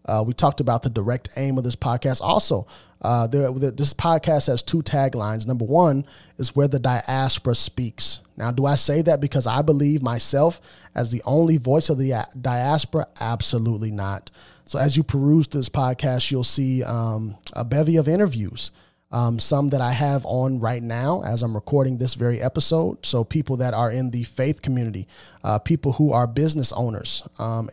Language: English